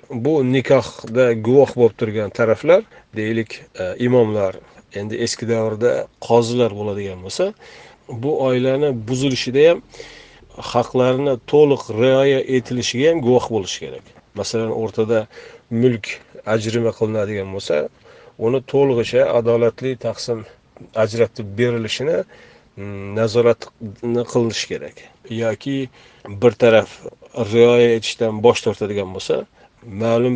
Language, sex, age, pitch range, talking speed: Russian, male, 40-59, 115-130 Hz, 85 wpm